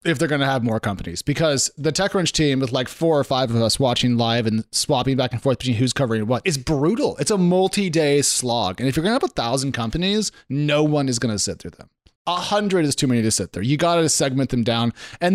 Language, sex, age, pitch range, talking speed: English, male, 30-49, 125-165 Hz, 260 wpm